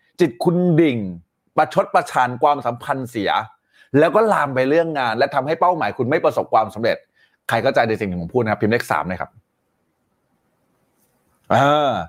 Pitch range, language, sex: 115-155 Hz, Thai, male